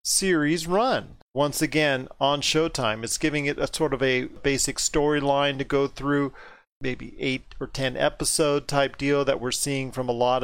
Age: 40-59